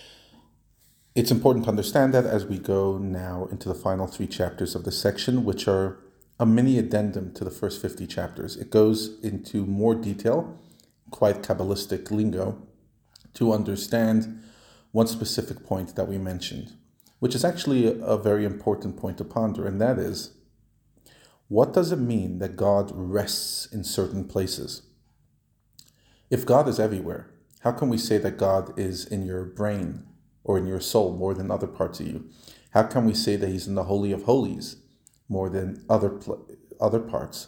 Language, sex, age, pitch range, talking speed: English, male, 40-59, 95-115 Hz, 170 wpm